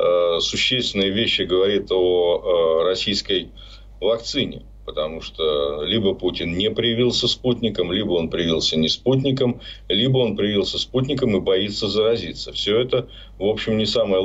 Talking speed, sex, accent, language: 135 wpm, male, native, Ukrainian